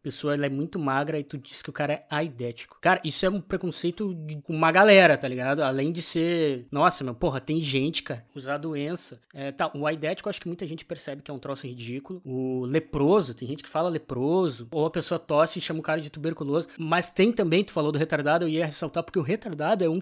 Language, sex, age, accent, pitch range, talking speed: Portuguese, male, 20-39, Brazilian, 140-175 Hz, 240 wpm